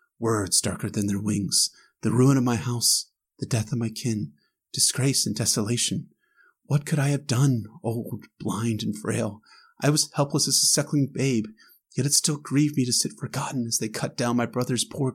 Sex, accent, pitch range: male, American, 110-155 Hz